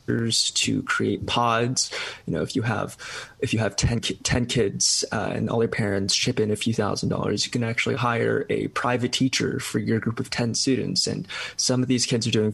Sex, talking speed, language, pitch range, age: male, 220 wpm, English, 110-125 Hz, 20-39